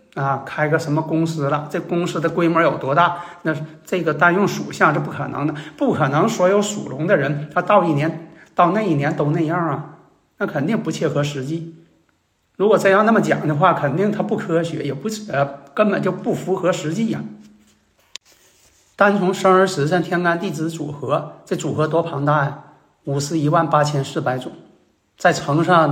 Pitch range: 145-175 Hz